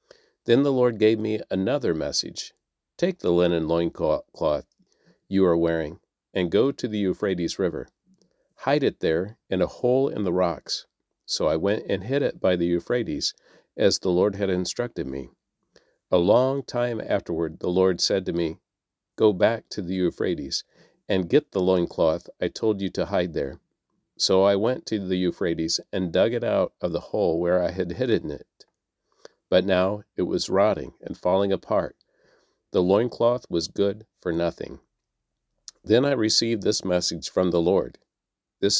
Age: 50-69